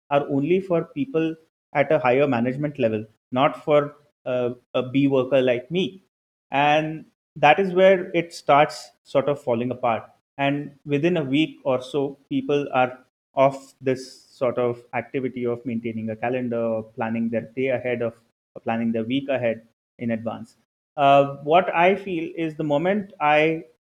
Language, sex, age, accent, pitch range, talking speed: English, male, 30-49, Indian, 125-155 Hz, 165 wpm